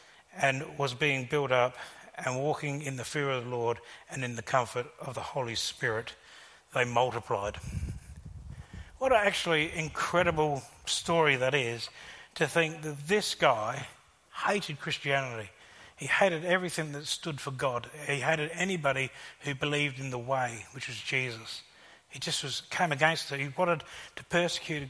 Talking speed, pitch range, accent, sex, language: 155 wpm, 125-160 Hz, Australian, male, English